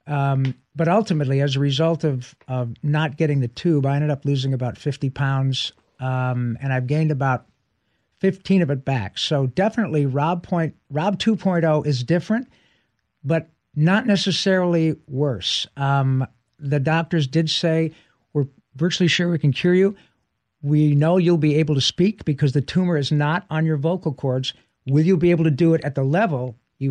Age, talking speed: 60-79, 175 wpm